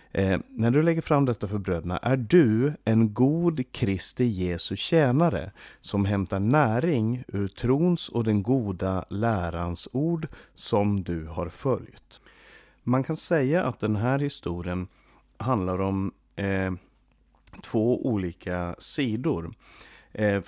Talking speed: 125 wpm